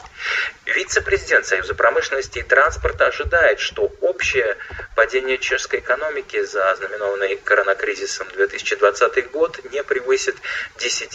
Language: Russian